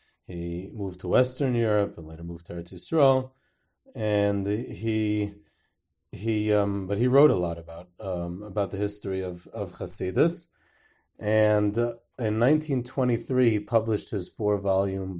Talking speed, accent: 150 wpm, American